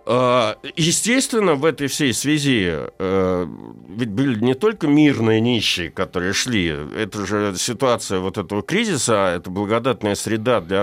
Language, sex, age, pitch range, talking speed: Russian, male, 60-79, 95-135 Hz, 130 wpm